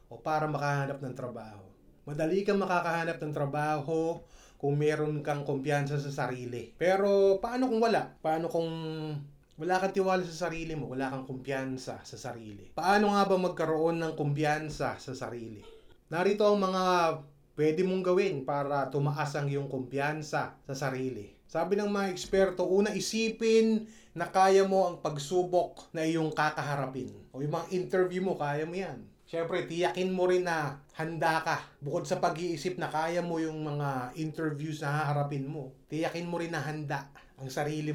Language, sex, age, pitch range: English, male, 20-39, 140-175 Hz